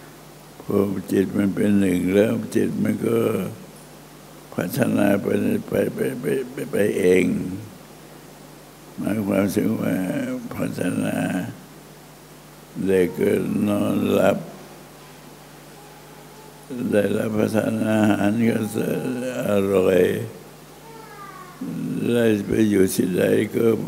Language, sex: Thai, male